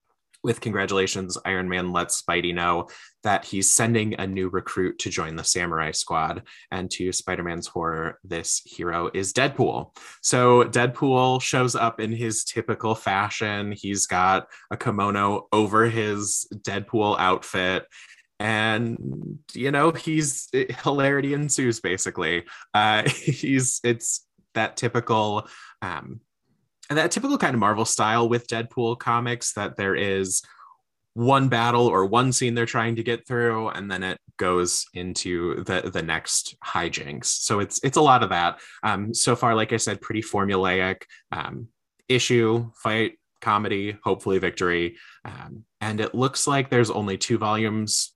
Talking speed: 145 wpm